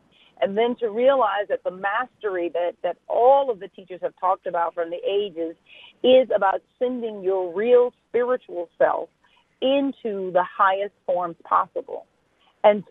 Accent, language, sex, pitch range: American, English, female, 180-230 Hz